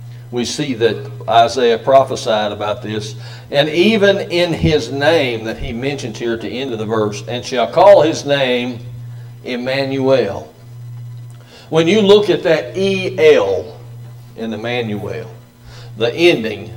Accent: American